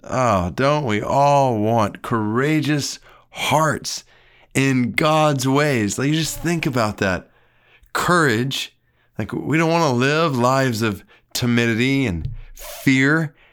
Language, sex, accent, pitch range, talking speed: English, male, American, 105-130 Hz, 125 wpm